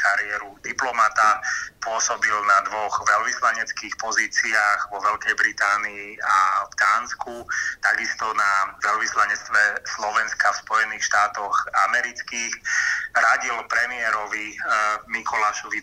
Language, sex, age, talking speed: Slovak, male, 30-49, 90 wpm